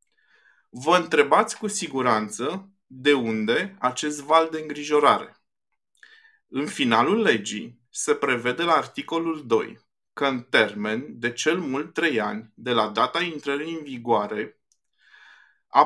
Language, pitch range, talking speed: Romanian, 125-170 Hz, 125 wpm